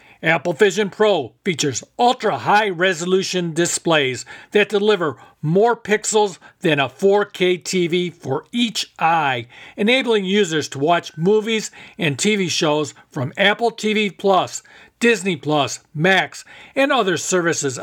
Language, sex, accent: English, male, American